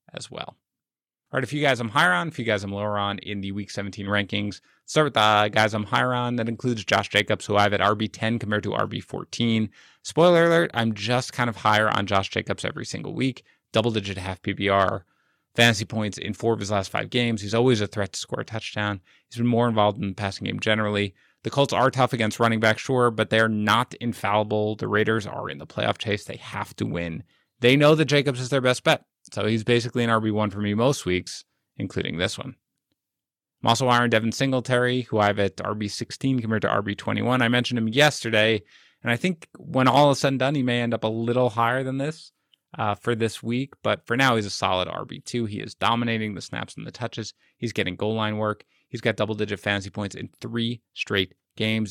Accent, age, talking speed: American, 30-49, 225 wpm